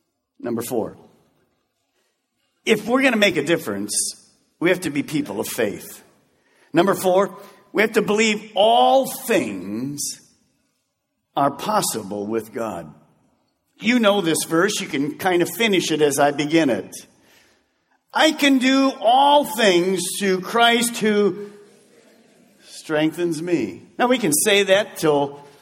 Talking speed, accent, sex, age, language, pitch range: 135 wpm, American, male, 50-69, English, 165-230 Hz